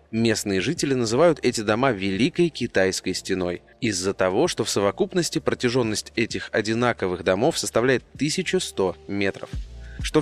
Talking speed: 125 wpm